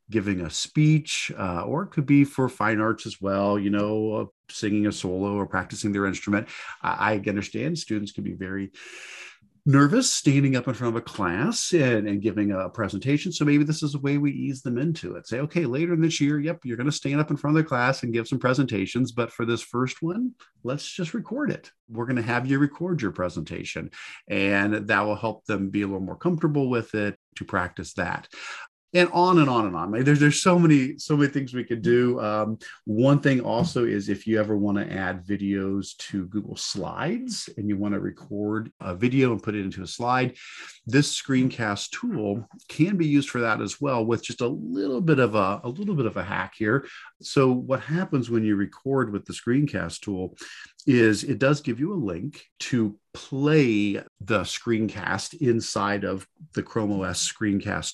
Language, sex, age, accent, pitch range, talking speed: English, male, 50-69, American, 100-145 Hz, 205 wpm